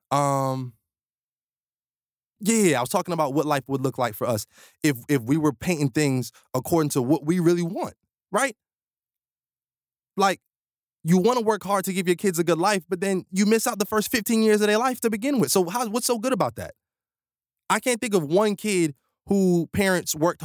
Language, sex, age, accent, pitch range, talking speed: English, male, 20-39, American, 125-175 Hz, 205 wpm